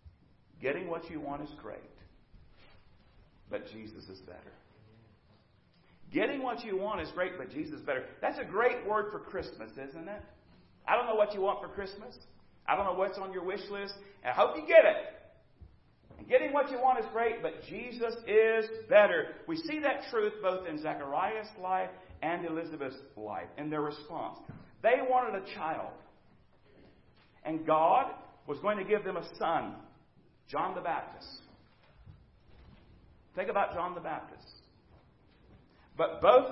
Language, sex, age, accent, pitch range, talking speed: English, male, 50-69, American, 150-225 Hz, 160 wpm